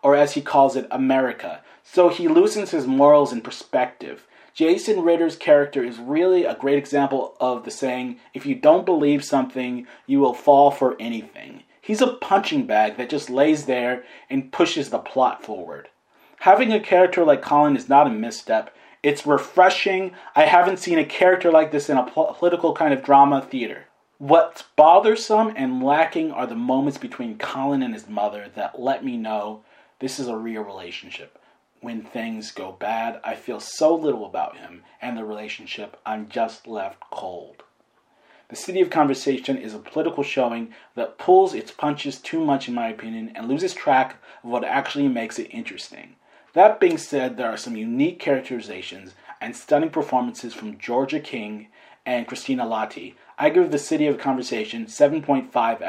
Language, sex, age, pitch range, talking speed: English, male, 30-49, 125-205 Hz, 170 wpm